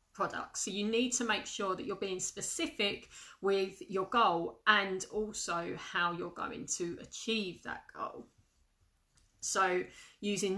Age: 30-49